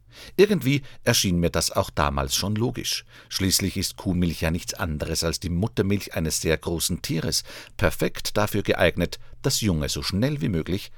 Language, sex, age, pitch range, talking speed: German, male, 50-69, 85-120 Hz, 165 wpm